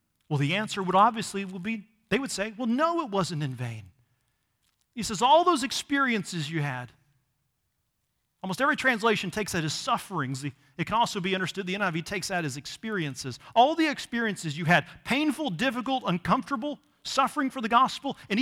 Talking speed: 175 wpm